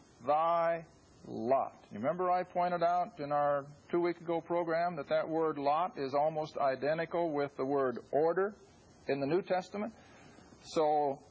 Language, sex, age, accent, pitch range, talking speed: English, male, 50-69, American, 145-195 Hz, 155 wpm